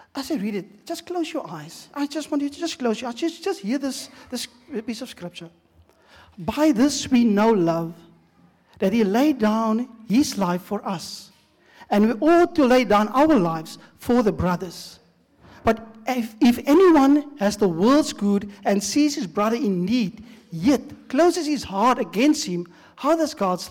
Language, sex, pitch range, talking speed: English, male, 205-280 Hz, 180 wpm